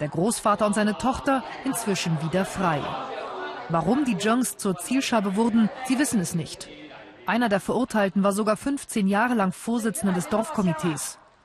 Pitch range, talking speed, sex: 170-230 Hz, 150 wpm, female